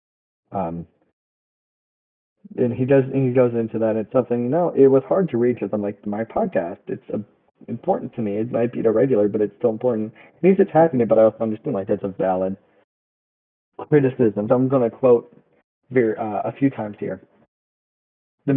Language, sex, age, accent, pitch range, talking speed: English, male, 30-49, American, 110-130 Hz, 195 wpm